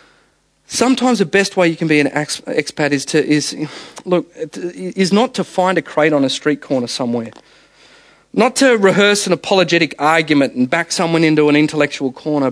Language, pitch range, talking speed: English, 140-195 Hz, 180 wpm